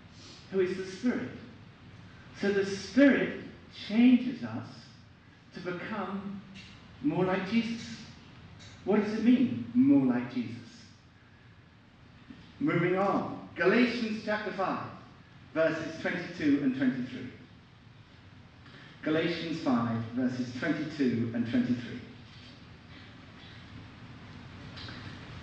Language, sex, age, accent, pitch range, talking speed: English, male, 50-69, British, 125-195 Hz, 85 wpm